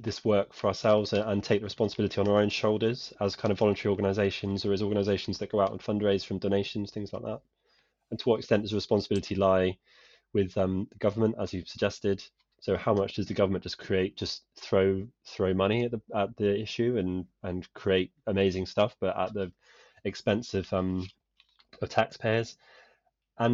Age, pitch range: 20-39, 95-110 Hz